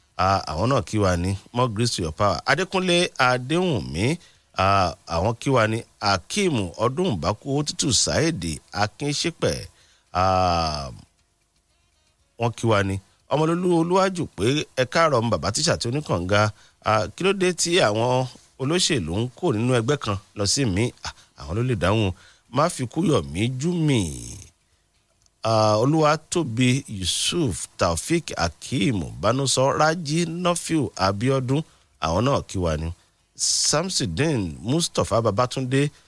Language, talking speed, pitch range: English, 120 wpm, 100-145 Hz